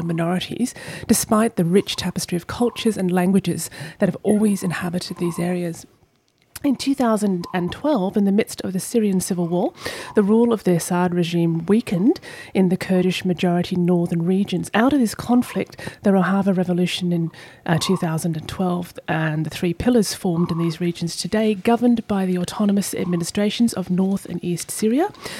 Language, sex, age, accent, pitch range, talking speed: English, female, 30-49, British, 175-215 Hz, 155 wpm